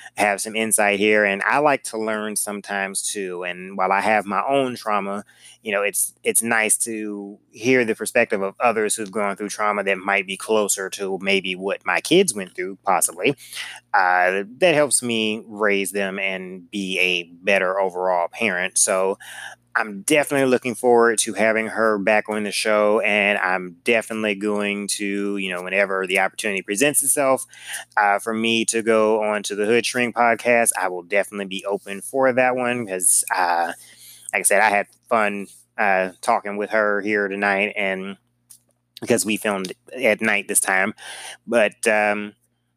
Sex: male